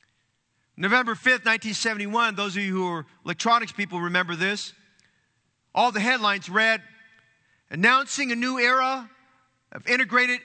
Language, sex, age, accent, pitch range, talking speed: English, male, 40-59, American, 200-245 Hz, 125 wpm